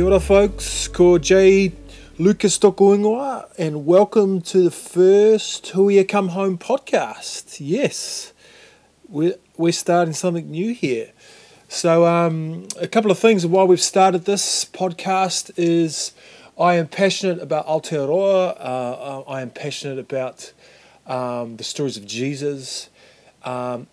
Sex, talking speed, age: male, 130 wpm, 30-49